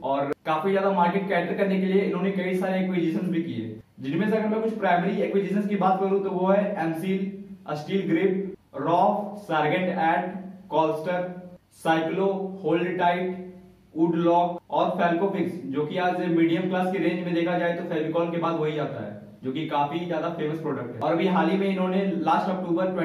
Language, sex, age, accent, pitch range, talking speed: Hindi, male, 20-39, native, 155-185 Hz, 125 wpm